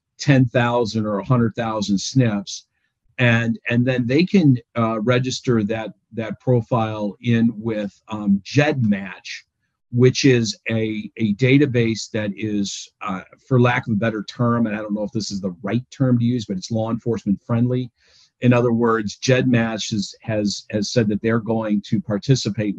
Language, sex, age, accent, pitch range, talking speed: English, male, 50-69, American, 105-125 Hz, 165 wpm